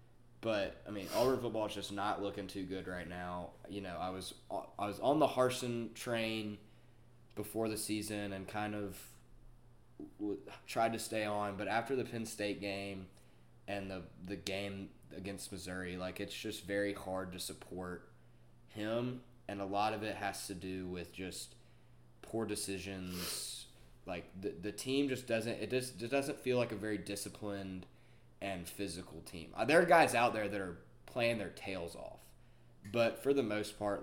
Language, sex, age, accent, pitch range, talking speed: English, male, 20-39, American, 95-115 Hz, 175 wpm